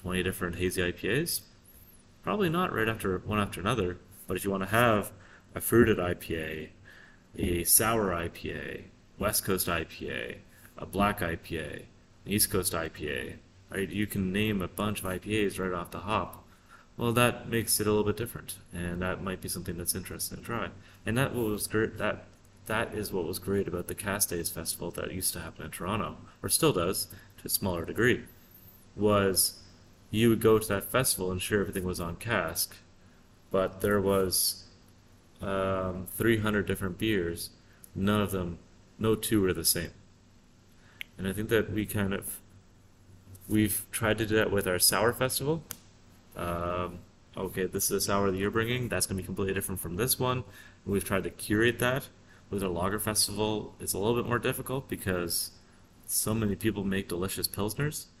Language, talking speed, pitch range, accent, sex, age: English, 180 wpm, 90-110 Hz, American, male, 30-49